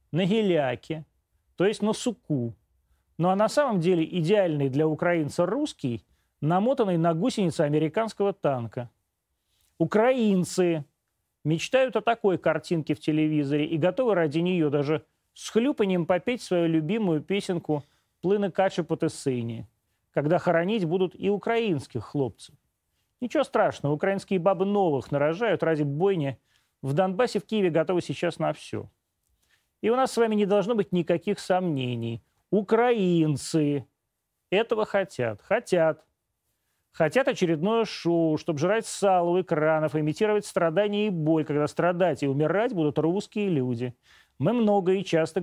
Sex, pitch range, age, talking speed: male, 145-200 Hz, 30-49, 130 wpm